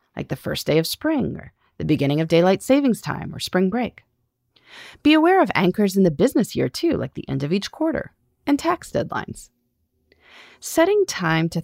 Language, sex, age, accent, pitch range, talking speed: English, female, 30-49, American, 155-255 Hz, 190 wpm